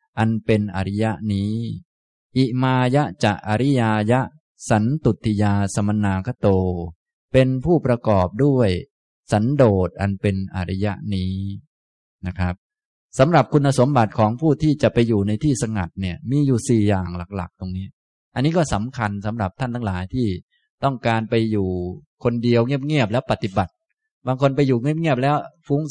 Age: 20-39